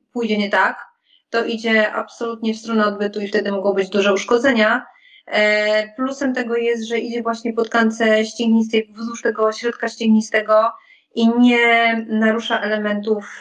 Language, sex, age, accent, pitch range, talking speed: Polish, female, 30-49, native, 200-235 Hz, 150 wpm